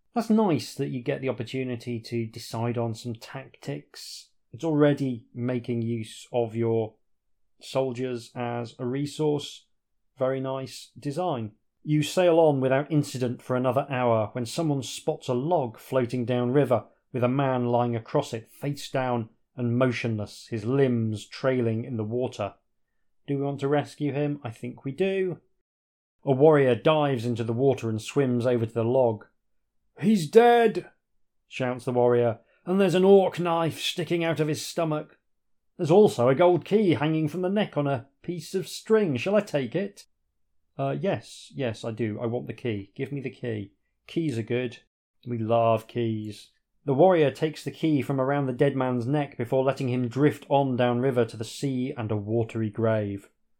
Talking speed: 175 wpm